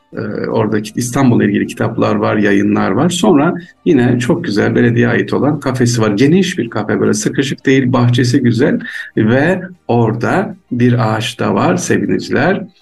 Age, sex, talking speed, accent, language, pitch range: 50-69, male, 145 wpm, native, Turkish, 105-130 Hz